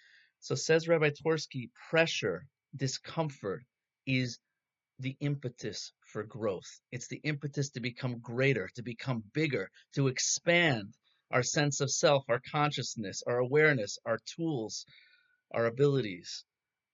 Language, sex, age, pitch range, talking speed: English, male, 30-49, 110-140 Hz, 120 wpm